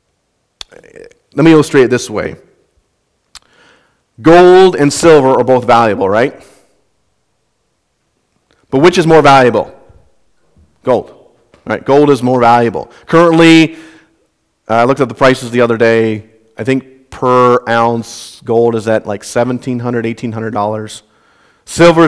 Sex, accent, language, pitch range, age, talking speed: male, American, English, 120-155 Hz, 40-59, 120 wpm